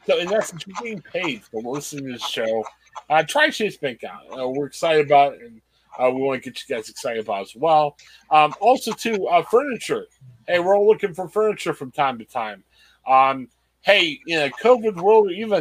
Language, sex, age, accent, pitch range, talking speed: English, male, 30-49, American, 150-225 Hz, 220 wpm